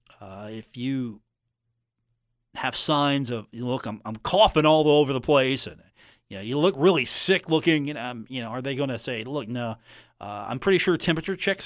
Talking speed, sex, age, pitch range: 205 wpm, male, 40-59, 115-155 Hz